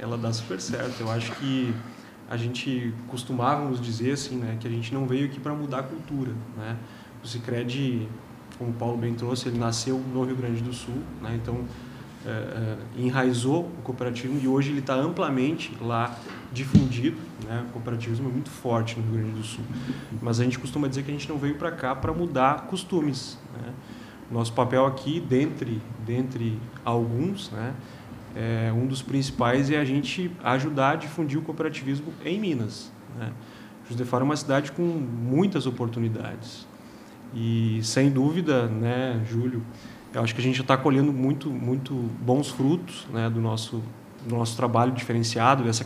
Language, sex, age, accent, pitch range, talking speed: Portuguese, male, 20-39, Brazilian, 120-135 Hz, 175 wpm